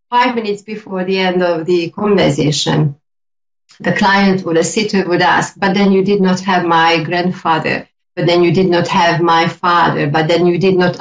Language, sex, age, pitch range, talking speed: English, female, 40-59, 165-195 Hz, 195 wpm